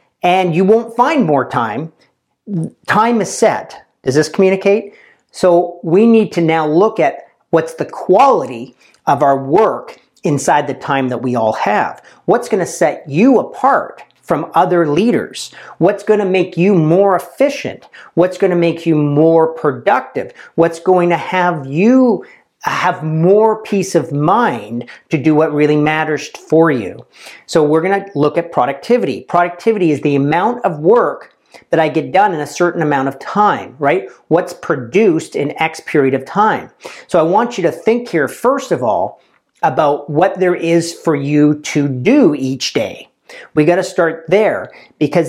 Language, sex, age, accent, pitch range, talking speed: English, male, 40-59, American, 155-190 Hz, 170 wpm